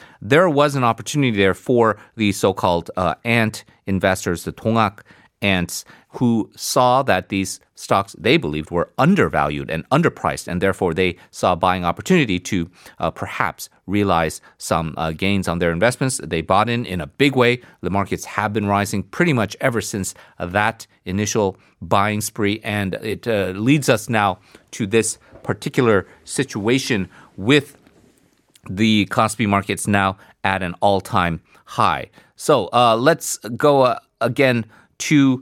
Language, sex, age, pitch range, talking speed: English, male, 40-59, 95-125 Hz, 150 wpm